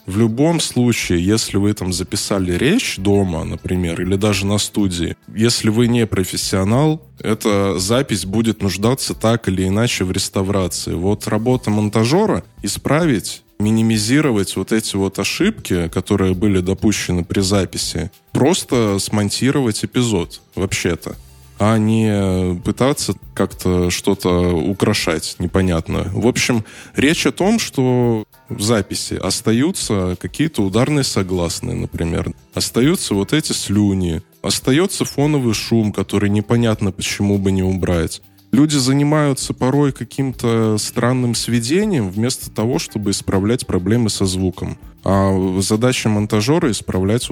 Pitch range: 95-115 Hz